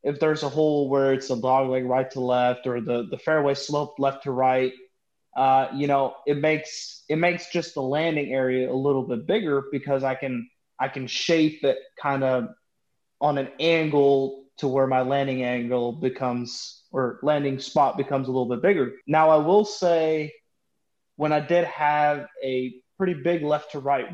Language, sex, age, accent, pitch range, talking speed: English, male, 20-39, American, 125-150 Hz, 185 wpm